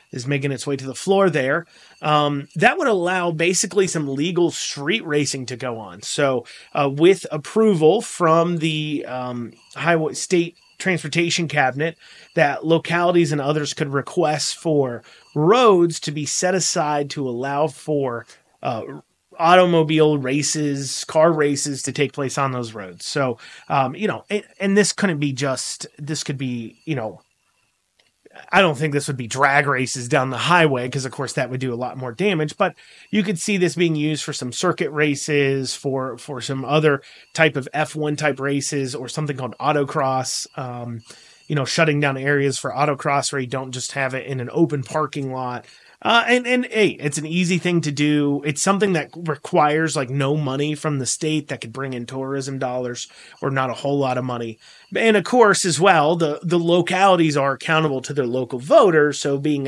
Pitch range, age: 135-165 Hz, 30-49